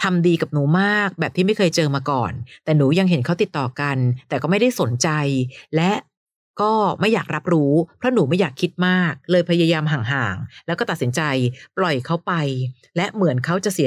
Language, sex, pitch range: Thai, female, 145-195 Hz